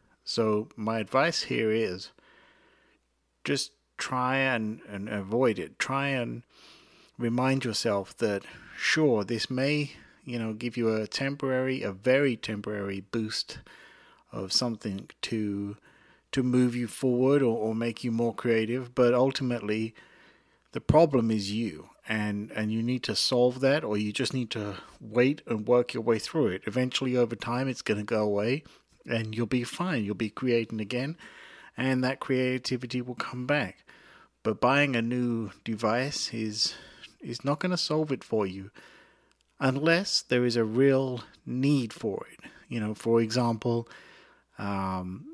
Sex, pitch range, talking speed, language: male, 110-130 Hz, 150 wpm, English